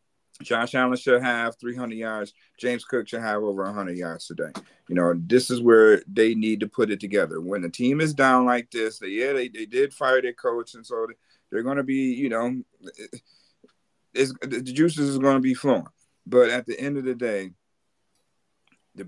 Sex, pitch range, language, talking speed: male, 100-125 Hz, English, 200 wpm